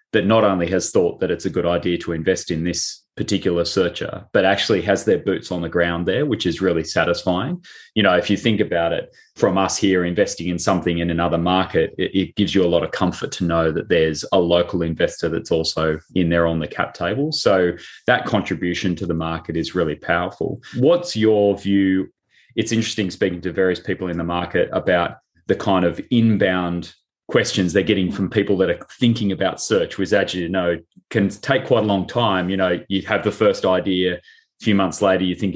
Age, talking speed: 30-49, 215 wpm